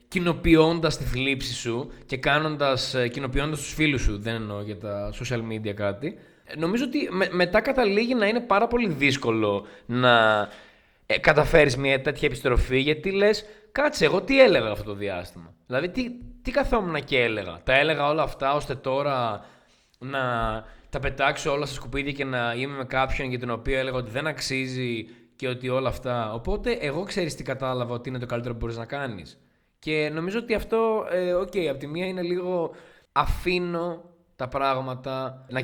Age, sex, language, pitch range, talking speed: 20-39, male, Greek, 120-155 Hz, 175 wpm